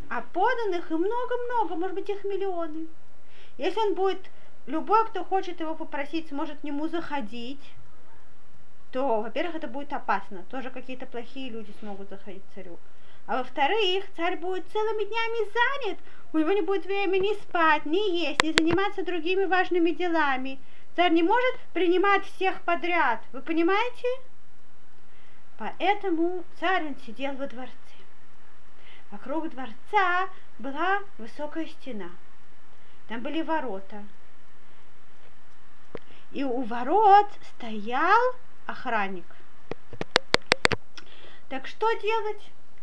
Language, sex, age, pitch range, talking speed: Russian, female, 30-49, 265-385 Hz, 115 wpm